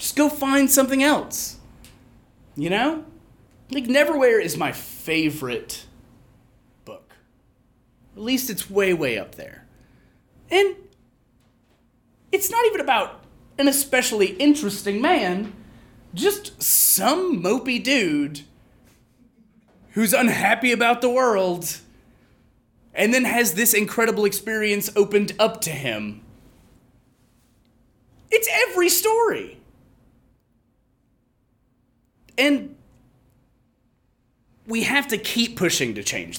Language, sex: English, male